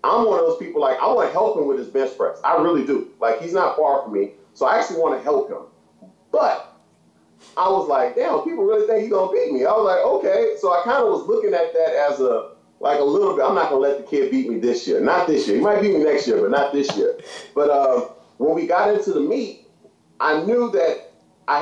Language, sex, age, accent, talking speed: English, male, 30-49, American, 270 wpm